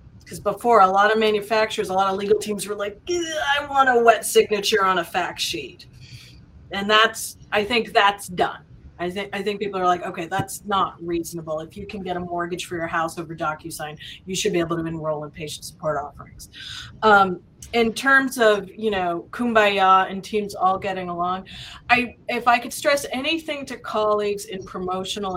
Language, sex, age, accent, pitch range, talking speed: English, female, 30-49, American, 180-220 Hz, 190 wpm